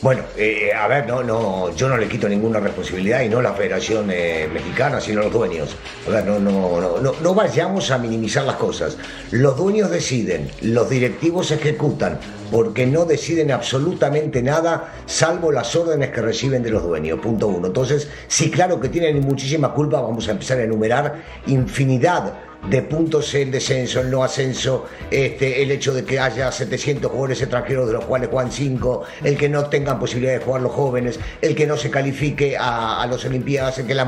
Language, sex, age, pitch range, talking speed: Spanish, male, 50-69, 125-155 Hz, 190 wpm